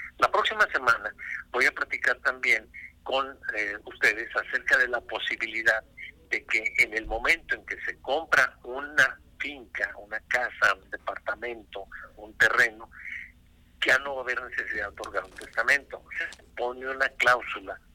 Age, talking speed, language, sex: 50-69, 150 wpm, Spanish, male